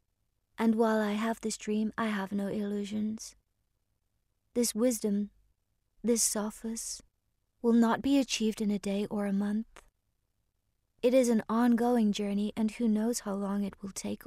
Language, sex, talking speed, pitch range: English, female, 155 wpm, 200-230 Hz